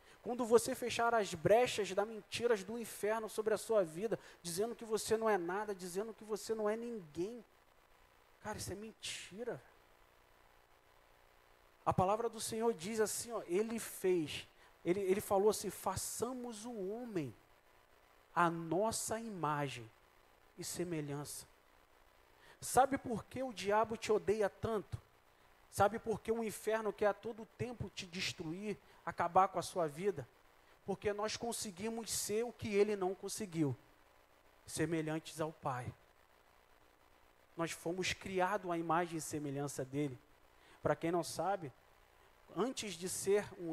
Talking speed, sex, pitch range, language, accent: 140 wpm, male, 140-215 Hz, Portuguese, Brazilian